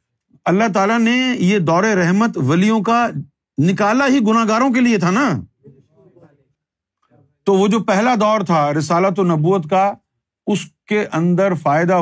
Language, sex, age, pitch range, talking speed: Urdu, male, 50-69, 140-200 Hz, 145 wpm